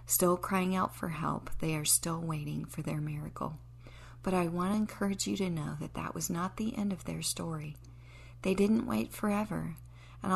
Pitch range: 125-185 Hz